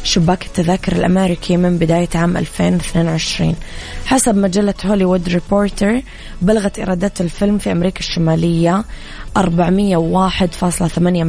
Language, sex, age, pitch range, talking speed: English, female, 20-39, 175-200 Hz, 95 wpm